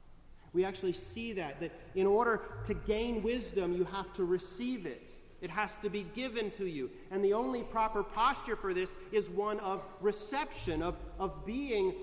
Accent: American